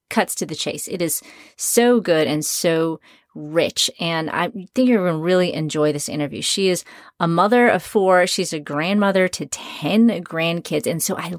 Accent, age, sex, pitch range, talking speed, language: American, 30-49, female, 155-200 Hz, 185 wpm, English